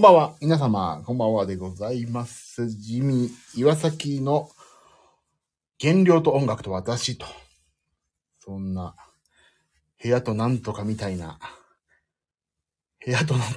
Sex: male